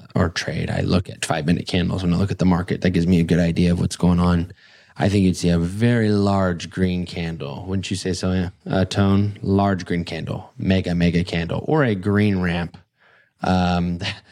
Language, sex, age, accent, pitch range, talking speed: English, male, 20-39, American, 90-105 Hz, 210 wpm